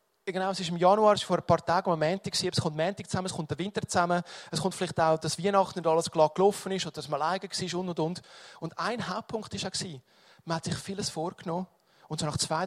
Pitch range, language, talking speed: 160-190 Hz, English, 260 wpm